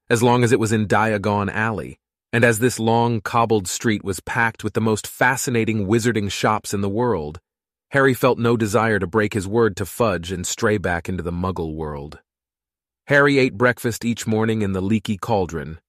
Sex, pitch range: male, 95-115 Hz